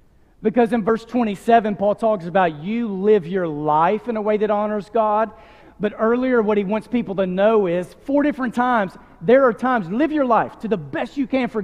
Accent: American